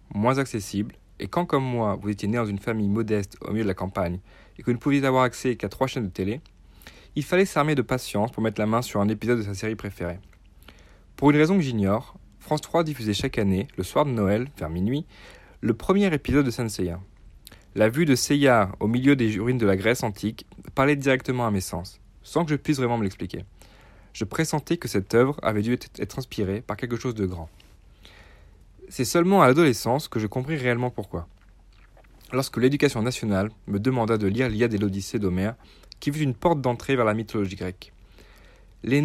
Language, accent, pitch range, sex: French, French, 100-135 Hz, male